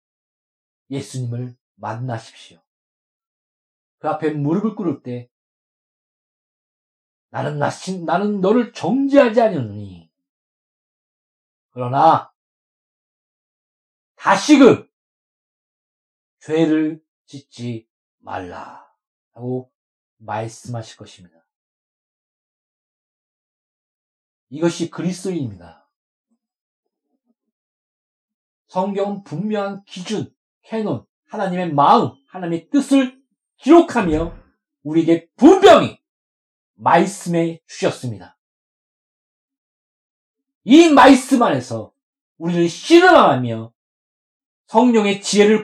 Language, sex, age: Korean, male, 40-59